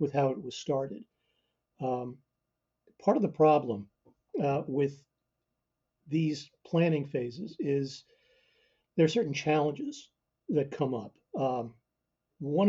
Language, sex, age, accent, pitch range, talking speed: English, male, 50-69, American, 135-155 Hz, 120 wpm